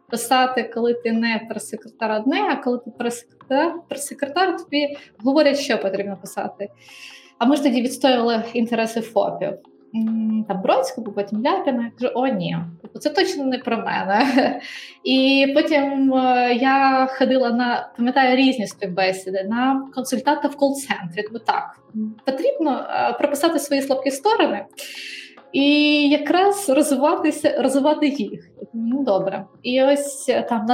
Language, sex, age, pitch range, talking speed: Ukrainian, female, 20-39, 230-285 Hz, 130 wpm